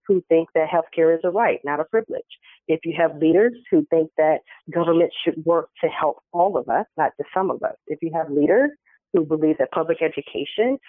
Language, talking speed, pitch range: English, 215 wpm, 155-185 Hz